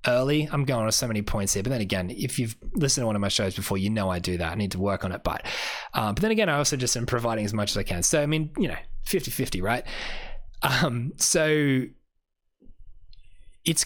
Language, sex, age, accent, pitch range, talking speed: English, male, 20-39, Australian, 100-130 Hz, 245 wpm